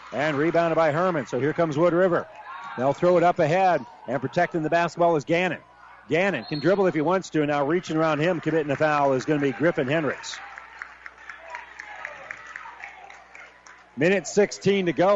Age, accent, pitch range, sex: 40-59, American, 150-195 Hz, male